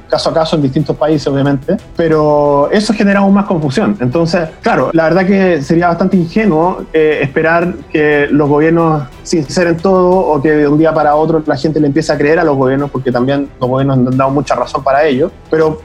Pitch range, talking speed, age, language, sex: 150-170 Hz, 210 wpm, 20-39, Spanish, male